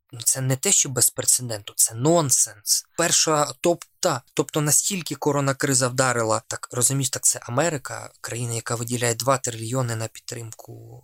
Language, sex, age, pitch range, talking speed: Ukrainian, male, 20-39, 120-150 Hz, 140 wpm